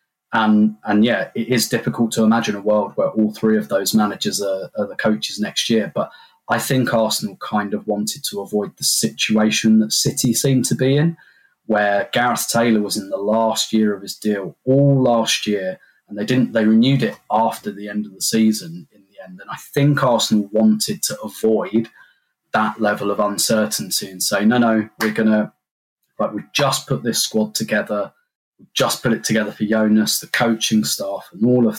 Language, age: English, 20-39